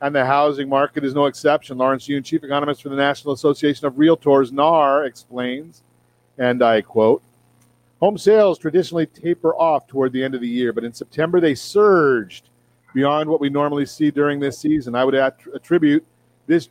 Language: English